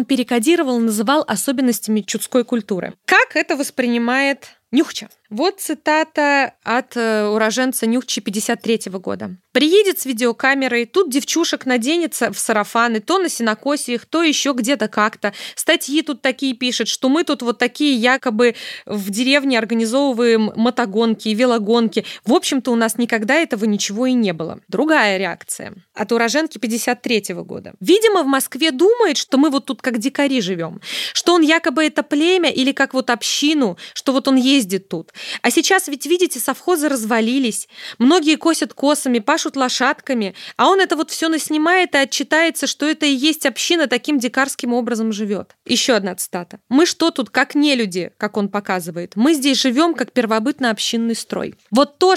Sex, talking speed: female, 160 wpm